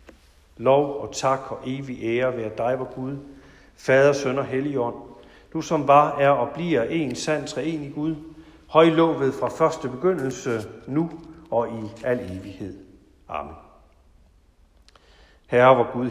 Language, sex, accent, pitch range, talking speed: Danish, male, native, 110-155 Hz, 140 wpm